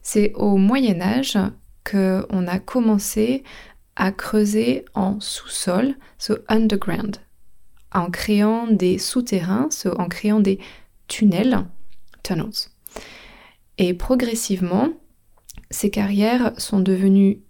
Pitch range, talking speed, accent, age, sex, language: 190-235 Hz, 90 wpm, French, 20-39, female, French